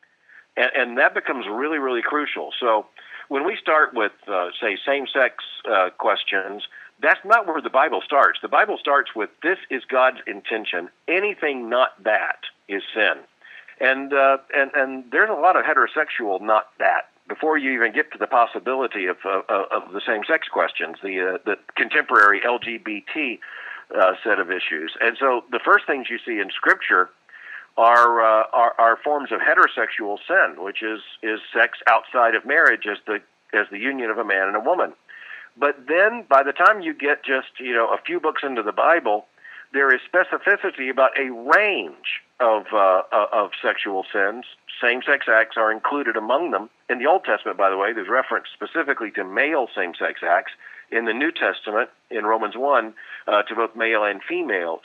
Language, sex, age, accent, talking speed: English, male, 50-69, American, 180 wpm